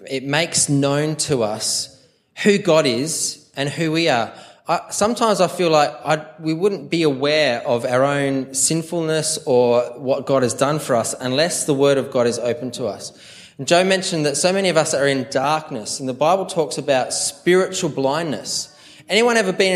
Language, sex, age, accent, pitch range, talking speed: English, male, 20-39, Australian, 130-160 Hz, 180 wpm